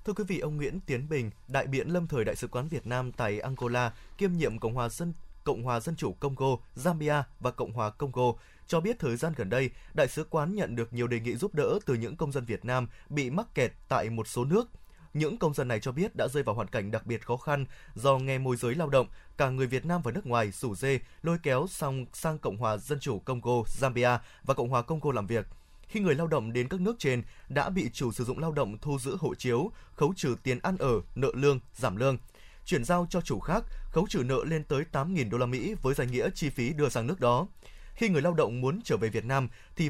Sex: male